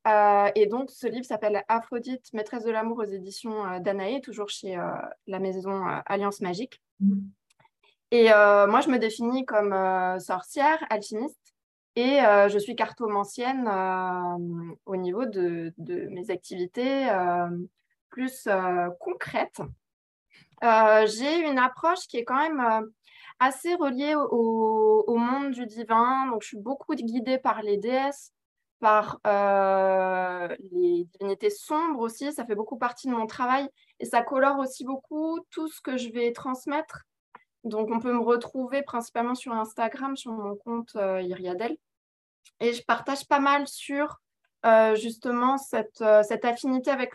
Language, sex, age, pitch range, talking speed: French, female, 20-39, 205-275 Hz, 155 wpm